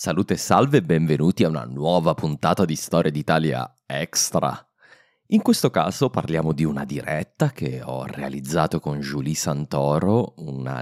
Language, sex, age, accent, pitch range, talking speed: Italian, male, 30-49, native, 75-90 Hz, 145 wpm